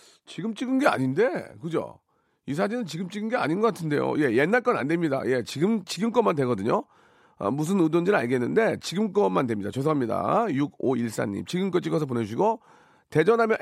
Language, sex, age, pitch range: Korean, male, 40-59, 135-215 Hz